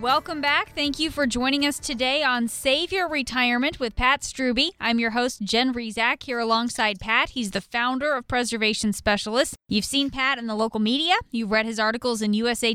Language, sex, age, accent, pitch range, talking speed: English, female, 20-39, American, 215-255 Hz, 200 wpm